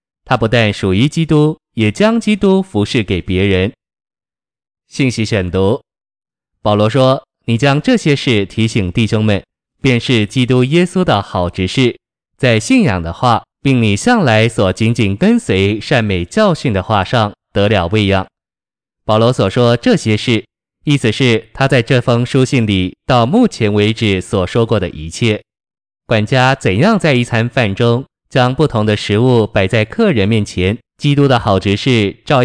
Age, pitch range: 20-39, 105-130 Hz